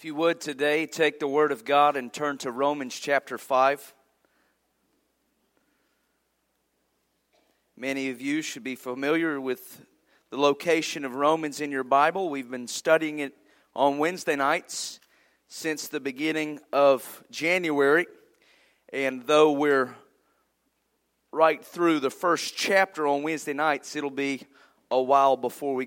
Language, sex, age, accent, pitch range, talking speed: English, male, 40-59, American, 135-170 Hz, 135 wpm